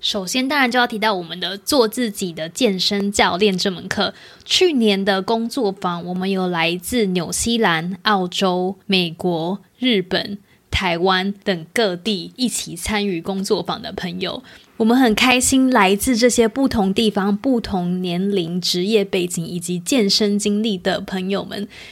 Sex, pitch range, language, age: female, 185-230 Hz, English, 20-39